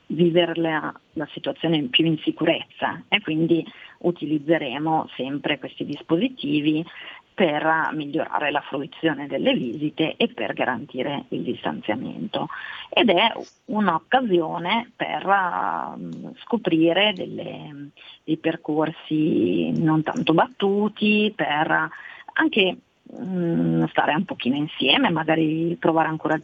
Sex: female